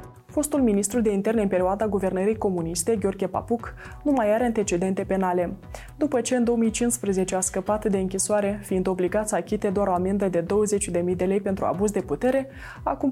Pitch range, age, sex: 190-225 Hz, 20-39, female